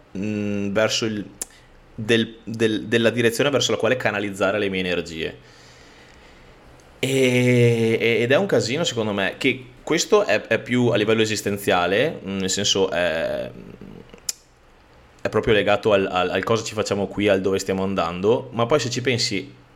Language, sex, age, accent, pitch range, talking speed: Italian, male, 20-39, native, 95-120 Hz, 150 wpm